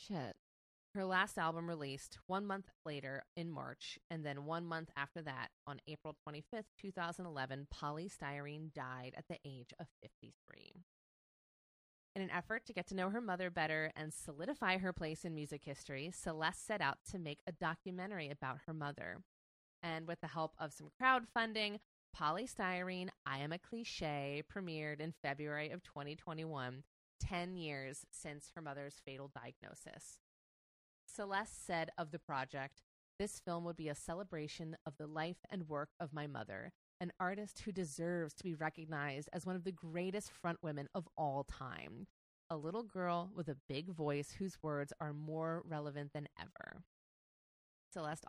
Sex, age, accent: female, 20-39, American